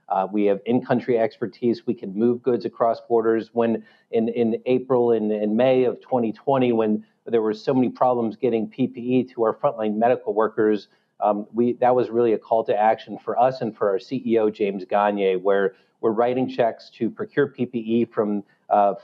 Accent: American